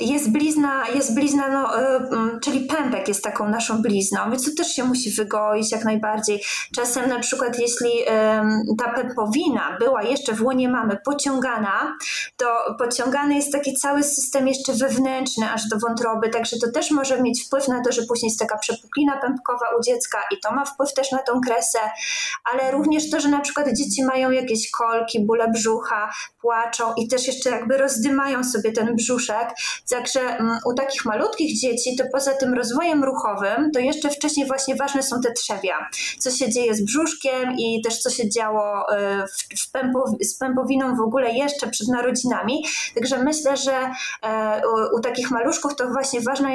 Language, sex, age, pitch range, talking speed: Polish, female, 20-39, 225-270 Hz, 170 wpm